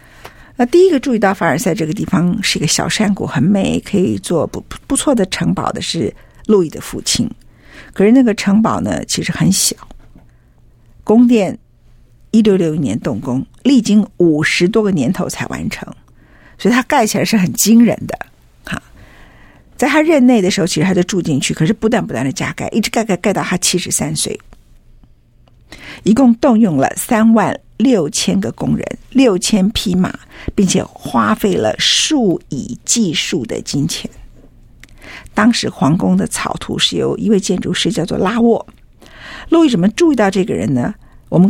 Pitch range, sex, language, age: 180-235 Hz, female, Chinese, 50-69